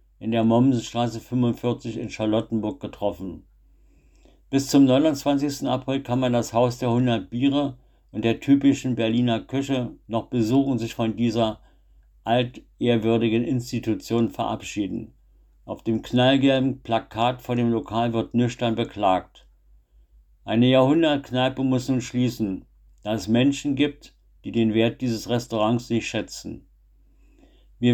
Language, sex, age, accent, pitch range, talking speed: German, male, 60-79, German, 110-130 Hz, 125 wpm